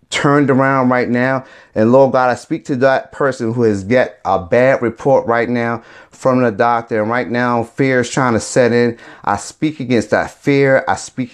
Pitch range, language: 100-130 Hz, English